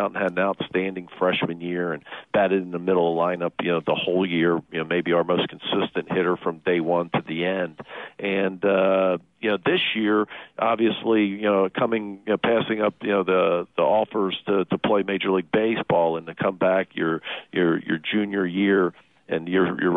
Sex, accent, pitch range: male, American, 90-110 Hz